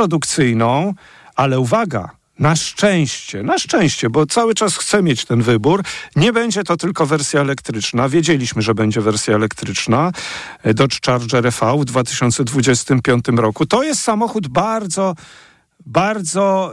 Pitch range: 135-180 Hz